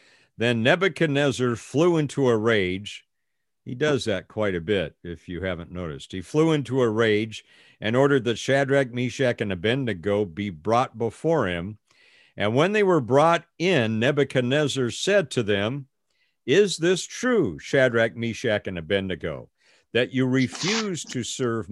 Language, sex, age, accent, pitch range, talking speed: English, male, 50-69, American, 105-140 Hz, 150 wpm